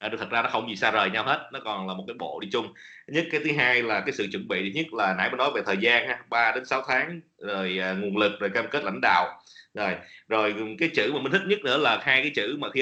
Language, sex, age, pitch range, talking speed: English, male, 20-39, 110-140 Hz, 290 wpm